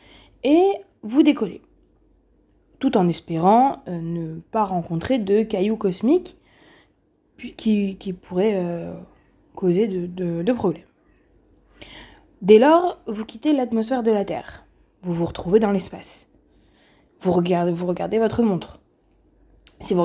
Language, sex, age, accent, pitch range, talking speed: French, female, 20-39, French, 185-275 Hz, 115 wpm